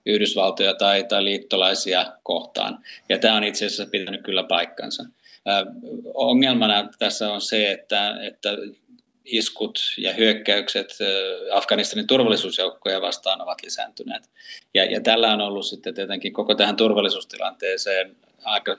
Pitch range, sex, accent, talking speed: 100-120 Hz, male, native, 110 wpm